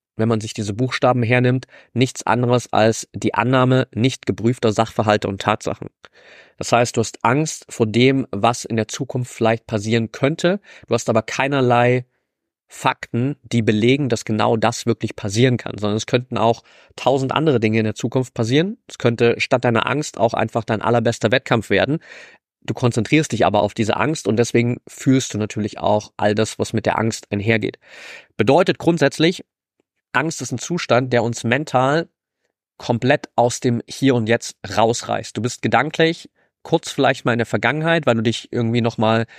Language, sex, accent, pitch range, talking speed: German, male, German, 110-130 Hz, 175 wpm